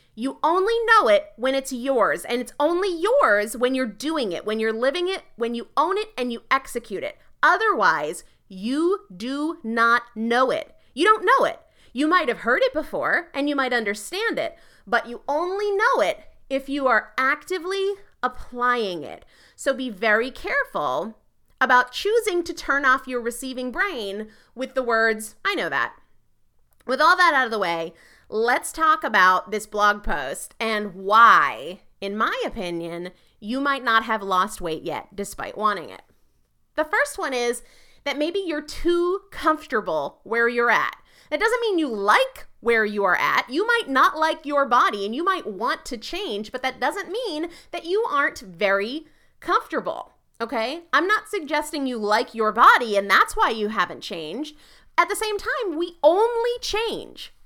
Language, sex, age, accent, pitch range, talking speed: English, female, 30-49, American, 225-340 Hz, 175 wpm